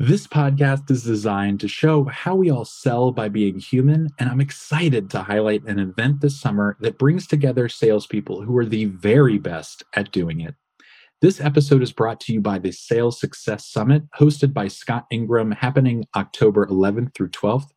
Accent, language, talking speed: American, English, 180 wpm